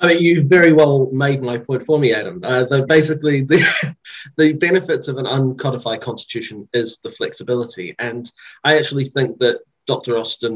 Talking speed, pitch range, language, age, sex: 175 wpm, 115-140 Hz, English, 30-49, male